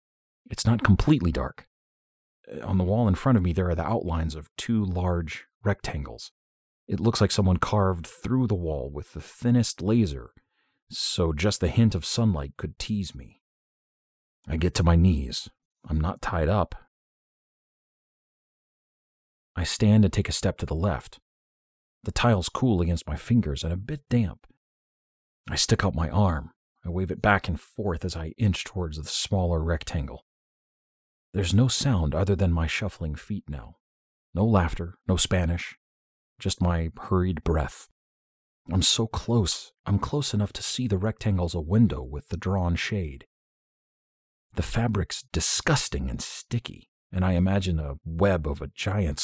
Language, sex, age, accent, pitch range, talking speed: English, male, 40-59, American, 80-100 Hz, 160 wpm